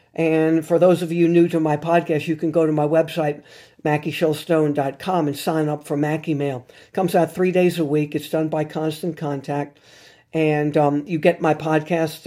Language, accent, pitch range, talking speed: English, American, 145-165 Hz, 195 wpm